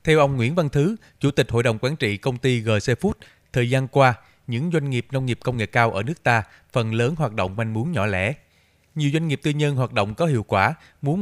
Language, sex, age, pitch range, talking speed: Vietnamese, male, 20-39, 105-135 Hz, 255 wpm